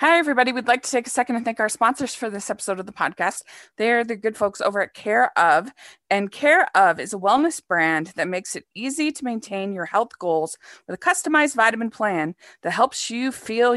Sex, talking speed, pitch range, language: female, 220 wpm, 190-245 Hz, English